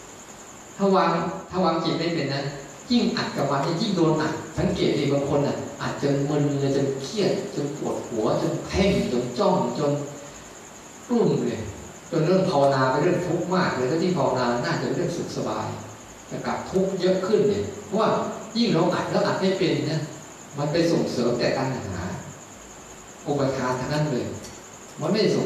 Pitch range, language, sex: 140-180 Hz, Thai, male